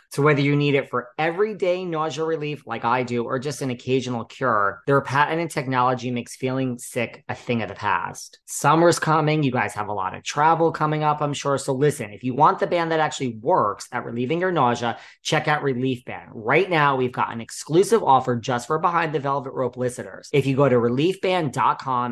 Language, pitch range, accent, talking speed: English, 120-150 Hz, American, 210 wpm